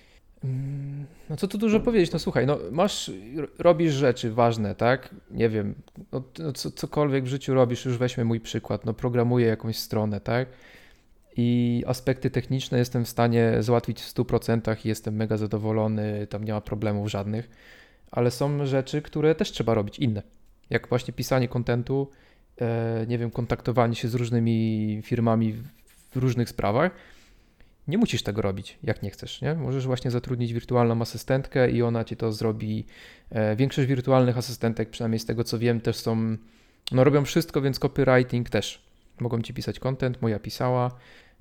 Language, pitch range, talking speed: Polish, 115-130 Hz, 160 wpm